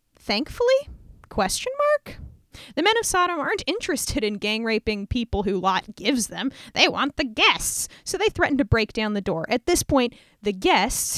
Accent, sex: American, female